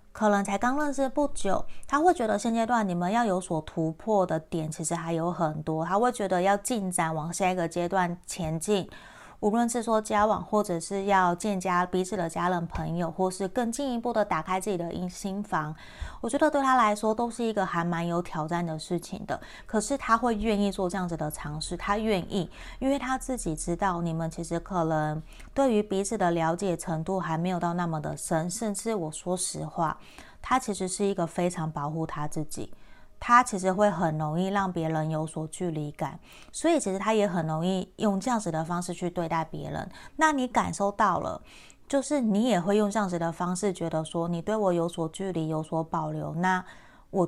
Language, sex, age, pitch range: Chinese, female, 30-49, 165-210 Hz